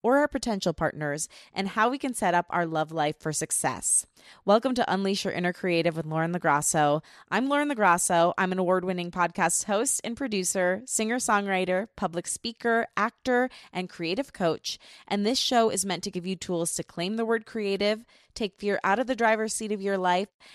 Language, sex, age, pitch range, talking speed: English, female, 20-39, 170-210 Hz, 190 wpm